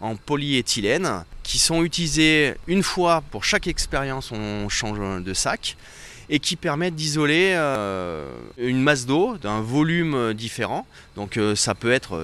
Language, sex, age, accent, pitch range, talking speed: French, male, 30-49, French, 105-145 Hz, 145 wpm